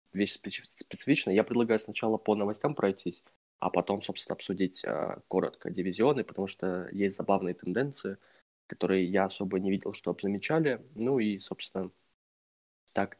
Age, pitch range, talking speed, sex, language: 20-39, 95-110 Hz, 135 wpm, male, Russian